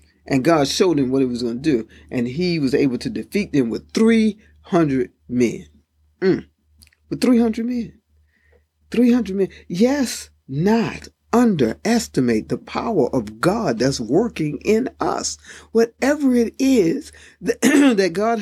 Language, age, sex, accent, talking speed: English, 50-69, male, American, 135 wpm